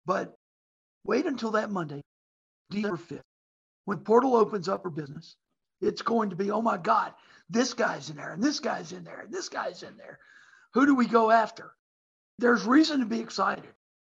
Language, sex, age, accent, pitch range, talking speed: English, male, 60-79, American, 195-230 Hz, 185 wpm